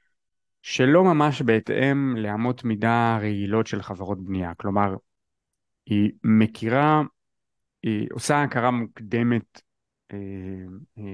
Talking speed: 95 wpm